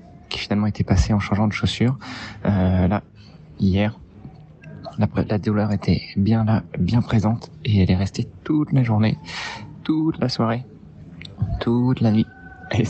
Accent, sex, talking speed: French, male, 150 wpm